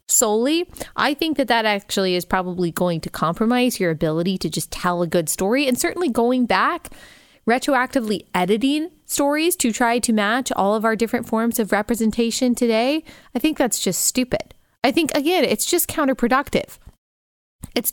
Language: English